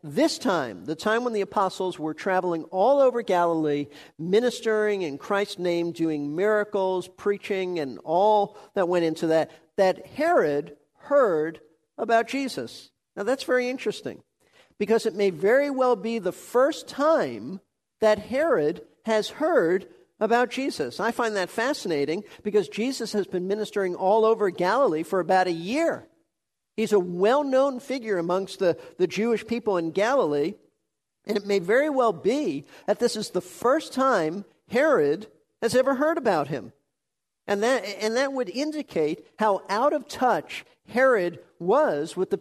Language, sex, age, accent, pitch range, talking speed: English, male, 50-69, American, 180-240 Hz, 155 wpm